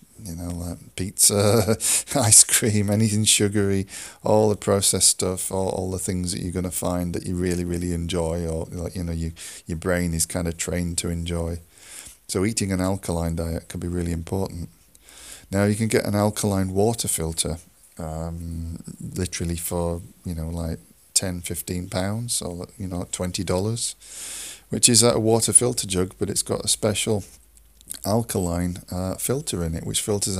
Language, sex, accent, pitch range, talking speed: English, male, British, 85-100 Hz, 175 wpm